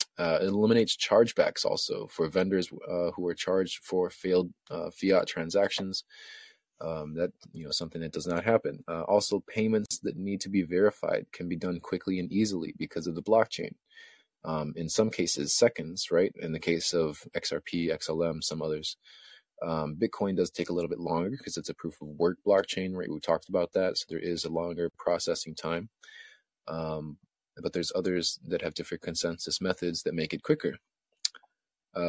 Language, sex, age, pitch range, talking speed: English, male, 20-39, 85-100 Hz, 180 wpm